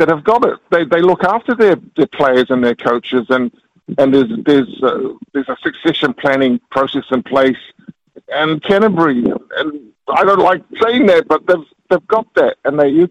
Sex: male